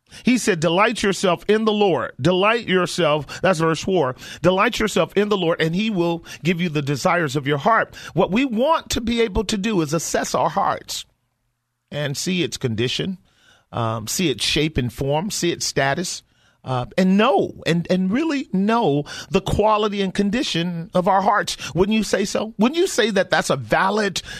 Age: 40-59